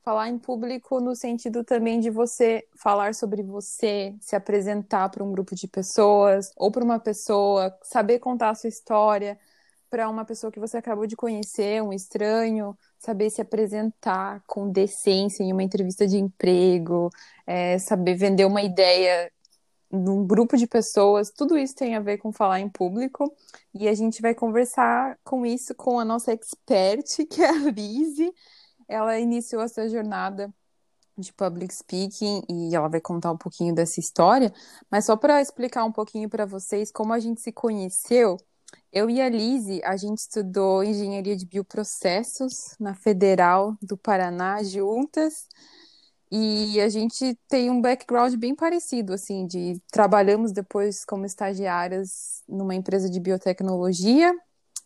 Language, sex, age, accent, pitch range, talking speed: Portuguese, female, 20-39, Brazilian, 195-235 Hz, 155 wpm